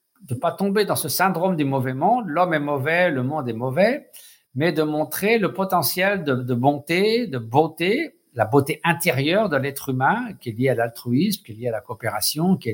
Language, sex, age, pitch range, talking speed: French, male, 60-79, 120-185 Hz, 215 wpm